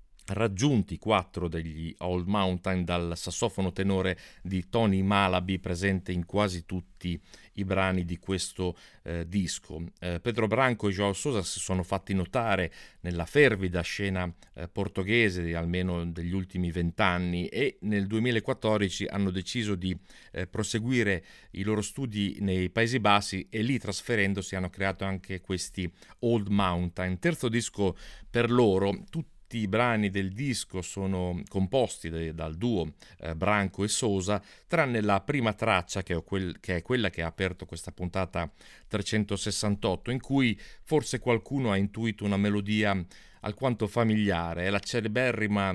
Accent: native